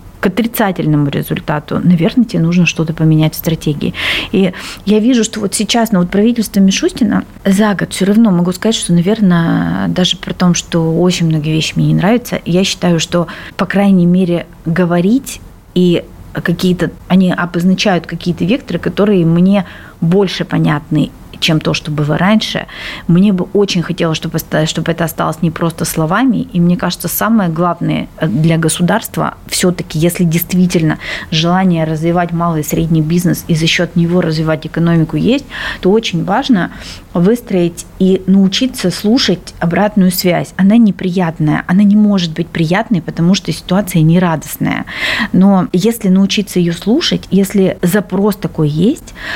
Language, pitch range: Russian, 165-200 Hz